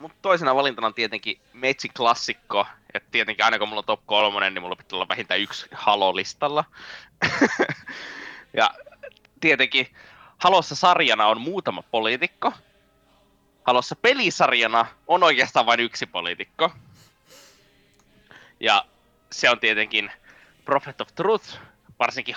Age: 20-39